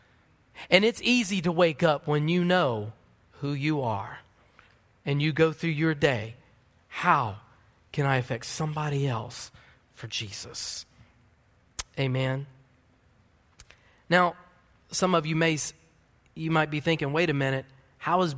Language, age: English, 30-49